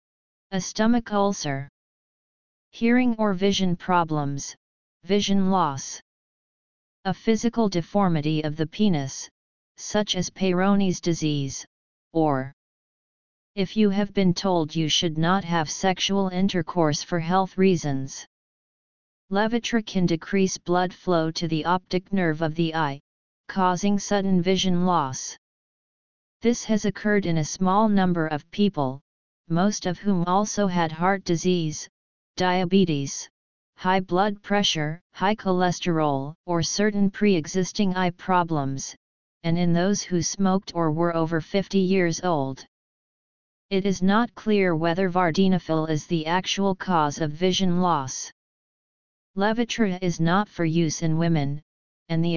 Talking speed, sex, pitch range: 125 wpm, female, 160-195 Hz